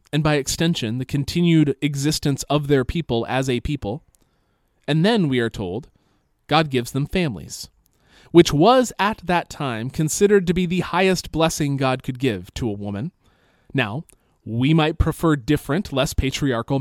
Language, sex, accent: English, male, American